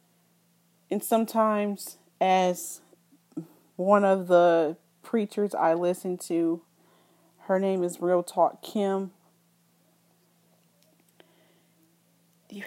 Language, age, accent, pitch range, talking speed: English, 40-59, American, 170-185 Hz, 80 wpm